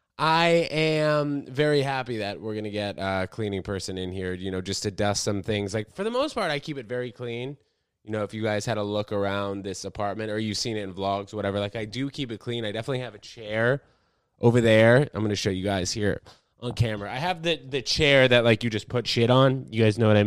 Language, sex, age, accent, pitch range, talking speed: English, male, 20-39, American, 100-135 Hz, 265 wpm